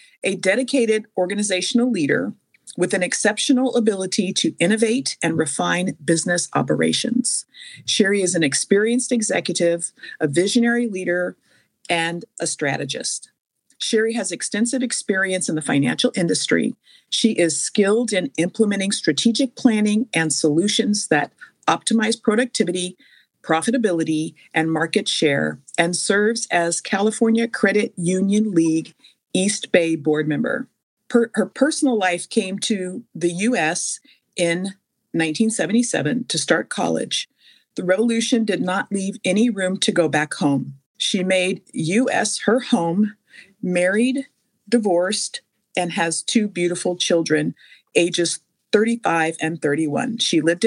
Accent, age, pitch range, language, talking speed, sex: American, 50-69, 170-230 Hz, English, 120 wpm, female